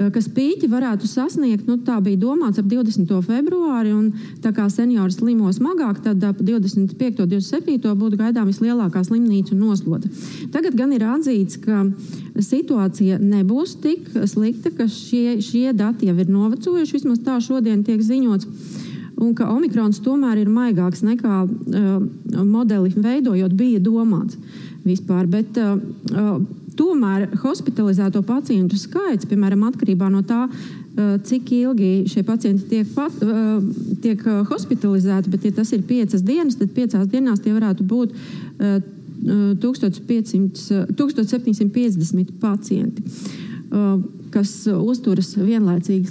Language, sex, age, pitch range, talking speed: English, female, 30-49, 200-240 Hz, 130 wpm